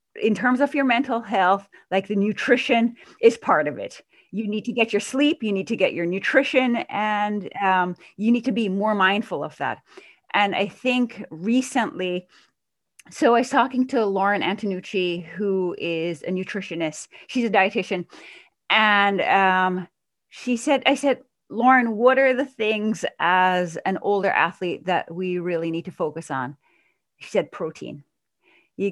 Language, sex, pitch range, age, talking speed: English, female, 185-245 Hz, 30-49, 165 wpm